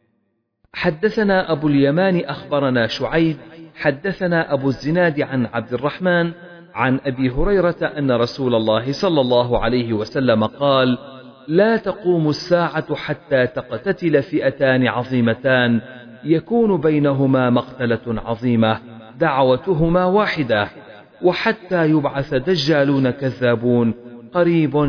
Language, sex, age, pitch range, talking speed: Arabic, male, 40-59, 120-165 Hz, 95 wpm